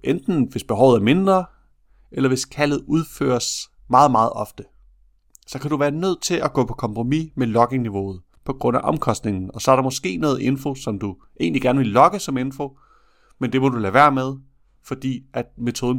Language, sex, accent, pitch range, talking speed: Danish, male, native, 110-150 Hz, 200 wpm